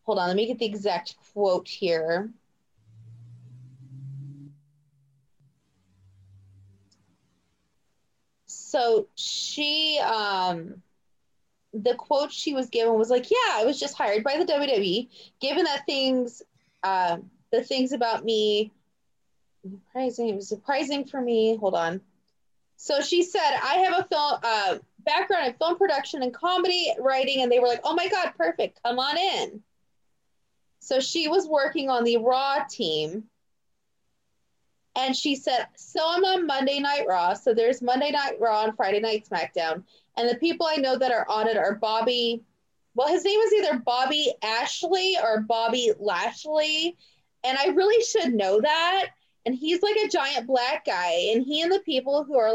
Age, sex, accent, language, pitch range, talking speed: 20-39, female, American, English, 210-315 Hz, 155 wpm